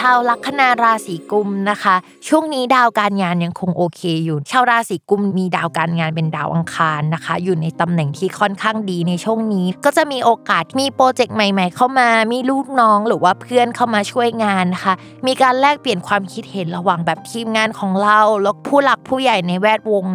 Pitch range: 185-245 Hz